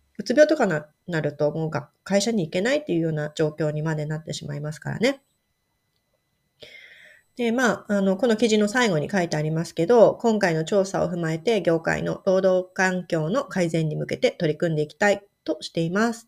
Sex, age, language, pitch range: female, 30-49, Japanese, 165-205 Hz